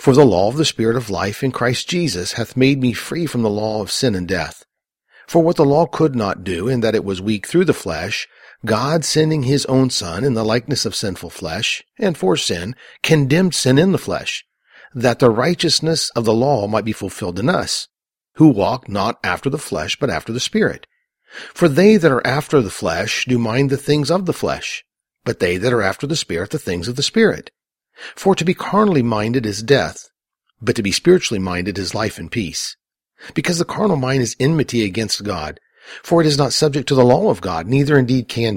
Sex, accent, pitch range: male, American, 110-155 Hz